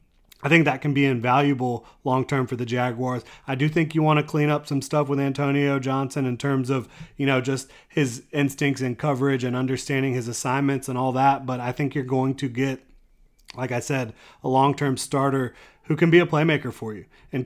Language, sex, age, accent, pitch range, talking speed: English, male, 30-49, American, 125-140 Hz, 210 wpm